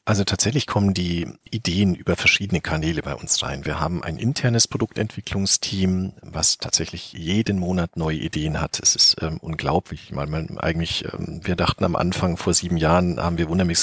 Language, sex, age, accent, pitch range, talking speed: German, male, 40-59, German, 80-95 Hz, 180 wpm